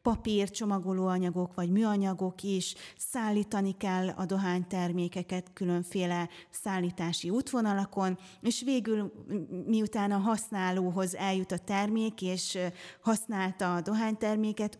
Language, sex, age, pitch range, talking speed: Hungarian, female, 20-39, 175-200 Hz, 95 wpm